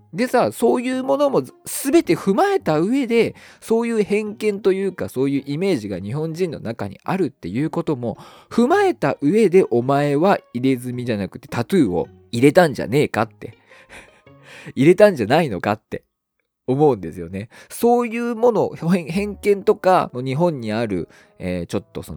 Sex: male